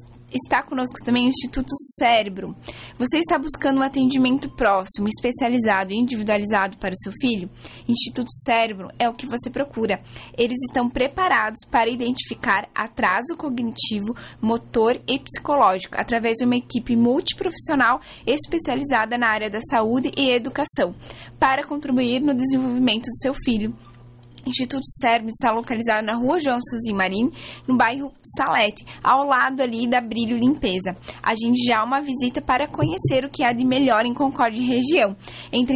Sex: female